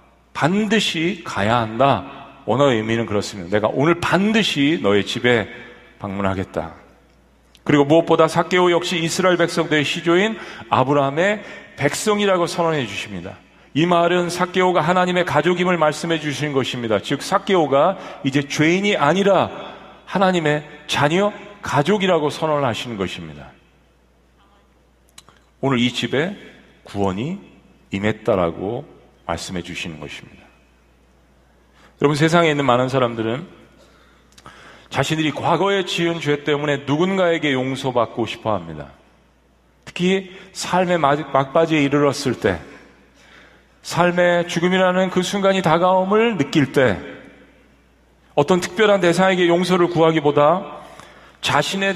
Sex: male